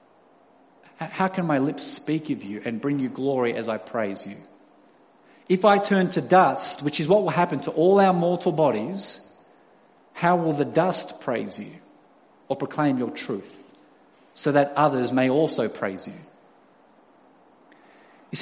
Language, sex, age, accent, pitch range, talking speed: English, male, 40-59, Australian, 135-185 Hz, 155 wpm